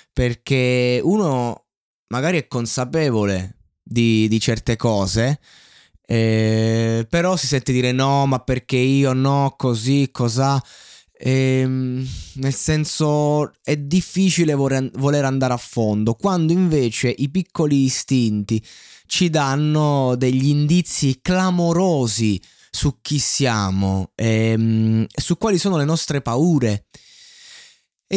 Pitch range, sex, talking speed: 115-155 Hz, male, 110 wpm